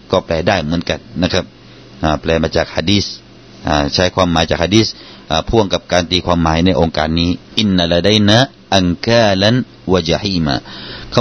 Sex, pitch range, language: male, 85-130 Hz, Thai